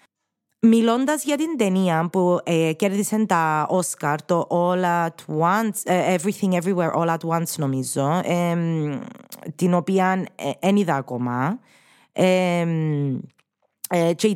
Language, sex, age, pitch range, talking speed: Greek, female, 20-39, 150-205 Hz, 110 wpm